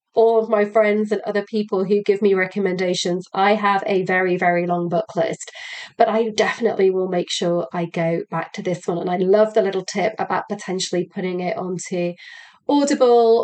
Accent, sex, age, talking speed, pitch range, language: British, female, 30-49, 190 wpm, 185-235 Hz, English